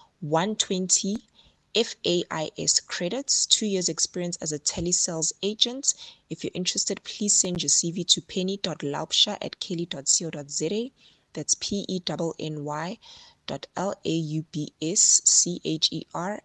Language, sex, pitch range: English, female, 155-185 Hz